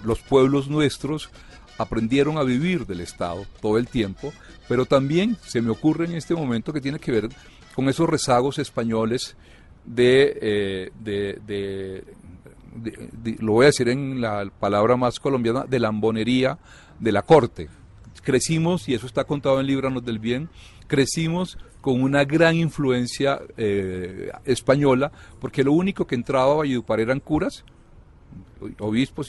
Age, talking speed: 40-59, 155 wpm